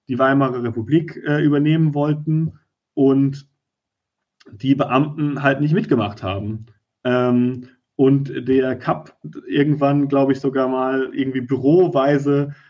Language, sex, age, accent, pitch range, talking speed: German, male, 30-49, German, 125-150 Hz, 115 wpm